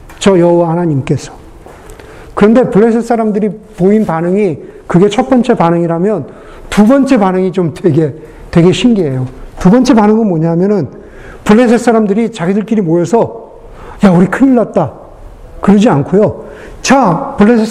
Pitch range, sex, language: 175-230 Hz, male, Korean